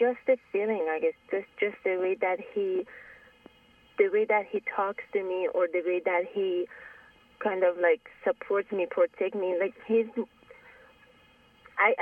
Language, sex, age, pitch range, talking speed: English, female, 20-39, 185-260 Hz, 165 wpm